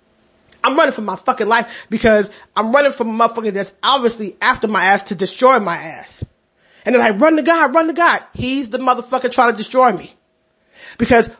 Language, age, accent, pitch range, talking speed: English, 30-49, American, 215-290 Hz, 200 wpm